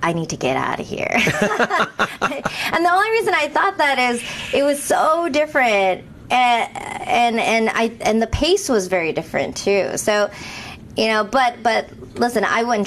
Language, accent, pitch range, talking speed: English, American, 180-225 Hz, 175 wpm